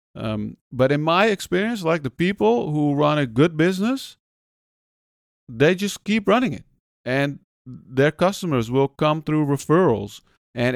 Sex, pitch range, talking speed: male, 125-150 Hz, 145 wpm